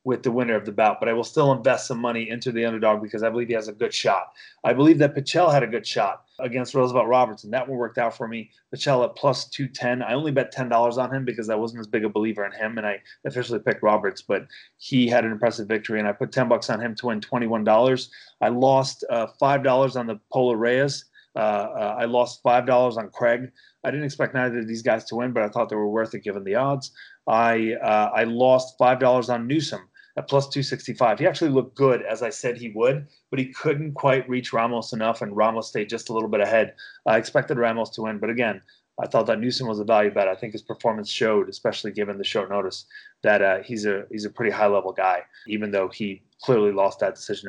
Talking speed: 240 wpm